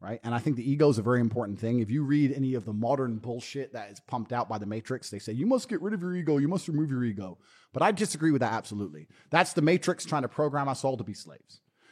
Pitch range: 115-165 Hz